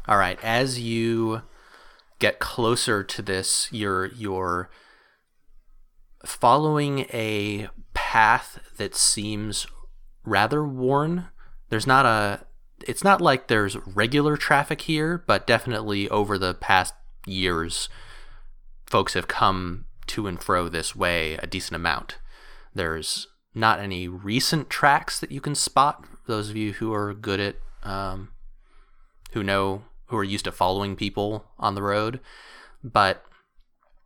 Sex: male